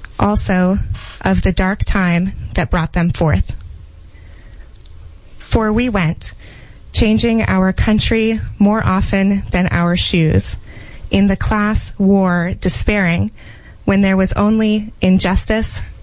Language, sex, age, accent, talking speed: English, female, 20-39, American, 110 wpm